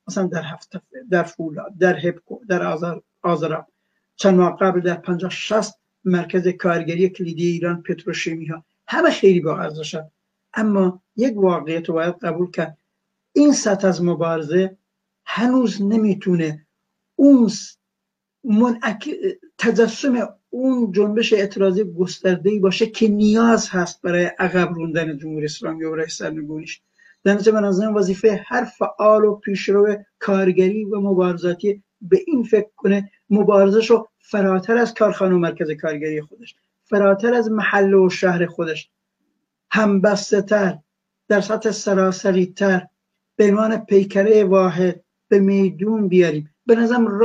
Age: 60-79